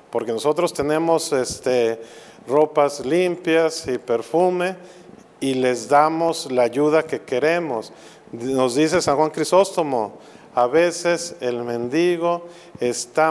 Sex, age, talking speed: male, 40-59, 110 wpm